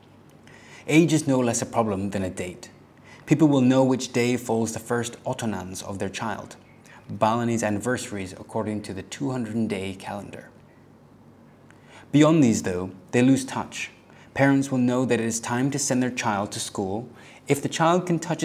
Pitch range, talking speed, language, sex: 110-130 Hz, 170 wpm, English, male